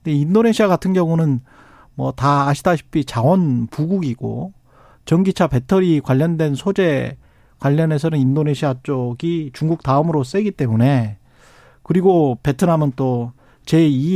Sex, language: male, Korean